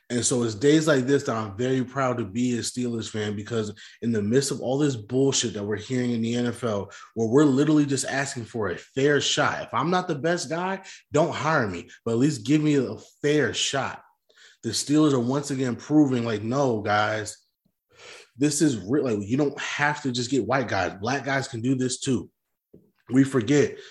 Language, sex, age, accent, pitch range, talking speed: English, male, 20-39, American, 120-145 Hz, 210 wpm